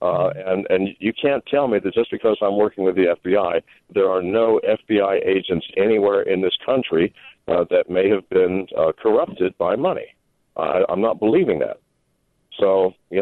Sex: male